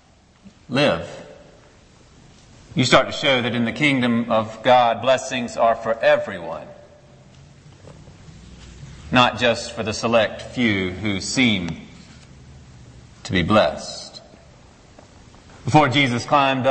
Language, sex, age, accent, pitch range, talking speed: English, male, 40-59, American, 115-145 Hz, 105 wpm